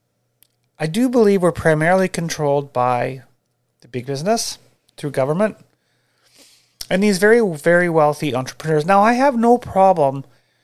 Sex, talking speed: male, 130 wpm